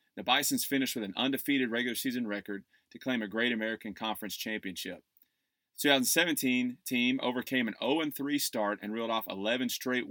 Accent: American